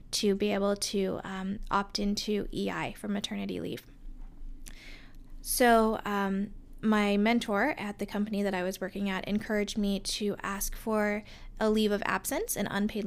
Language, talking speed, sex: English, 155 wpm, female